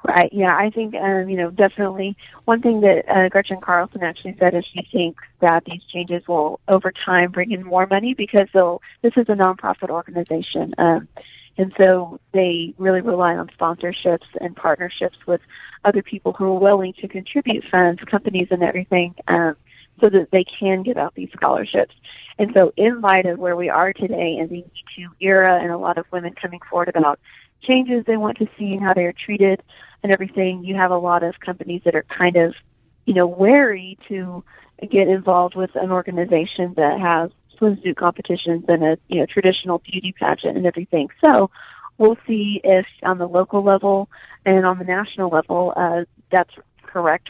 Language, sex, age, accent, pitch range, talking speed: English, female, 30-49, American, 175-195 Hz, 190 wpm